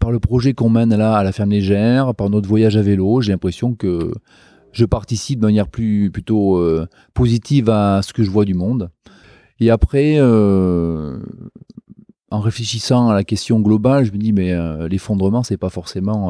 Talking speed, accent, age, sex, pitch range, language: 190 wpm, French, 30-49, male, 100-120 Hz, French